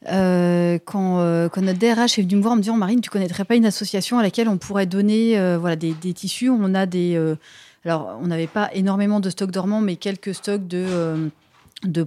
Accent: French